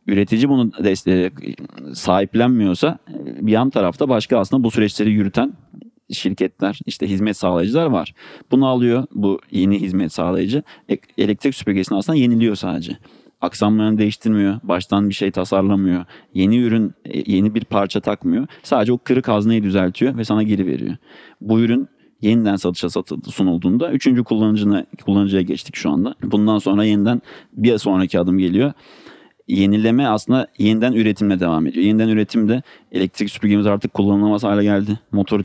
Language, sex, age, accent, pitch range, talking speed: Turkish, male, 30-49, native, 100-115 Hz, 140 wpm